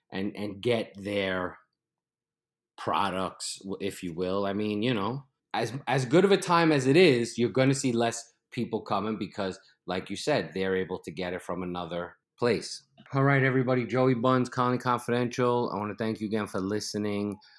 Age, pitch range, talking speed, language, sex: 30-49, 90-110 Hz, 185 wpm, English, male